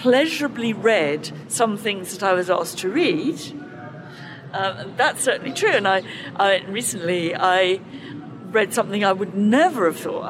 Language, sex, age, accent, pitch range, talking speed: English, female, 50-69, British, 170-215 Hz, 150 wpm